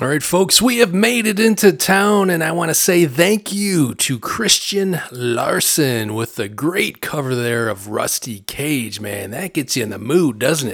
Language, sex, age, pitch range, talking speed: English, male, 30-49, 120-175 Hz, 195 wpm